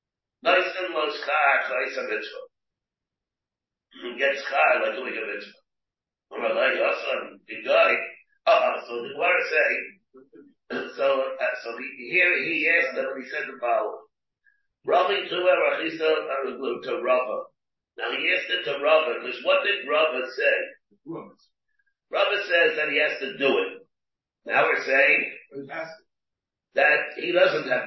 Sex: male